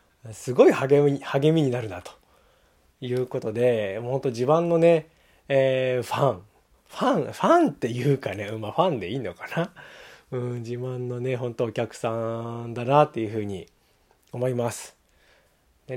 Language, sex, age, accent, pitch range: Japanese, male, 20-39, native, 105-135 Hz